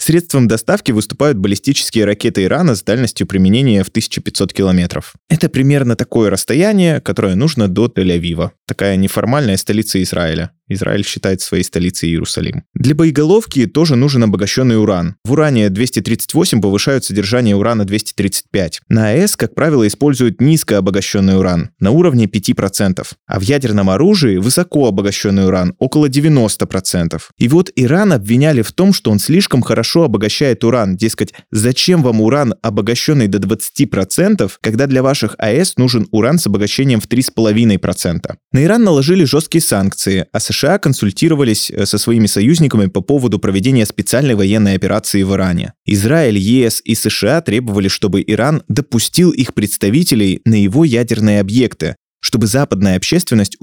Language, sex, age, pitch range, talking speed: Russian, male, 20-39, 100-140 Hz, 140 wpm